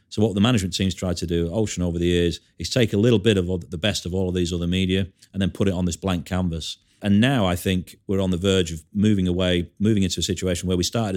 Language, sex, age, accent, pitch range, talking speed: English, male, 40-59, British, 85-105 Hz, 280 wpm